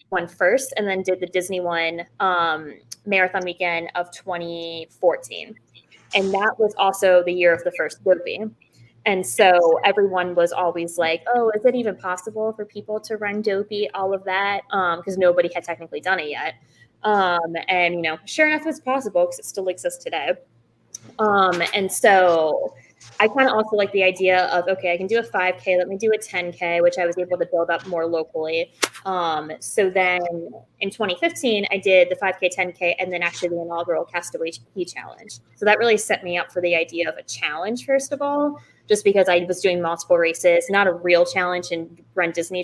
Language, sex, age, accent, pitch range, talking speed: English, female, 20-39, American, 175-210 Hz, 195 wpm